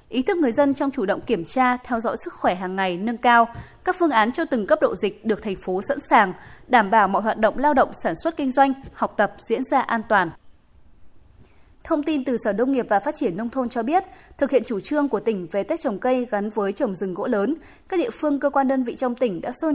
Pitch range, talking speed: 215-280 Hz, 265 wpm